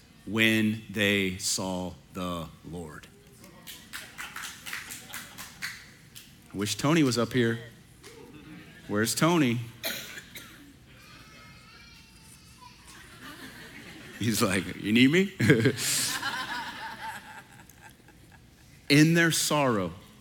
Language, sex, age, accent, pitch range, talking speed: English, male, 40-59, American, 100-130 Hz, 60 wpm